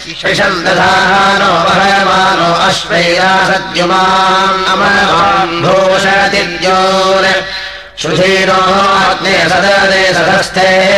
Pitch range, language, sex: 185-190 Hz, Russian, male